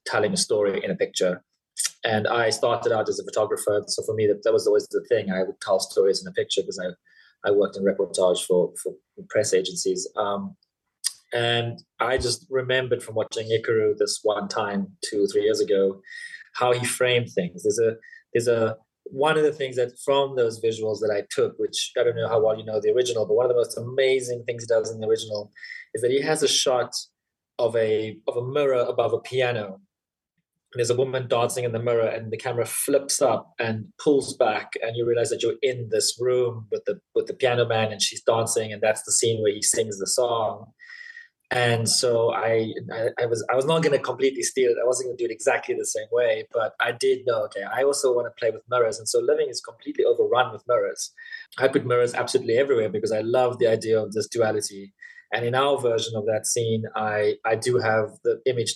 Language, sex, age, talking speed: English, male, 20-39, 225 wpm